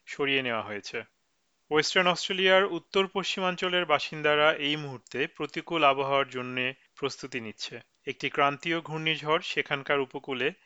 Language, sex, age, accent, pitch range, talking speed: Bengali, male, 40-59, native, 135-155 Hz, 115 wpm